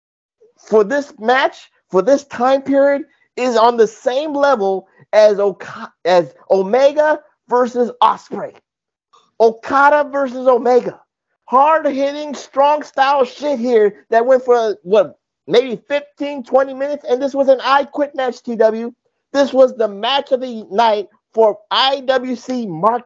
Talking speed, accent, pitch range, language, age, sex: 130 wpm, American, 220-275 Hz, English, 50-69, male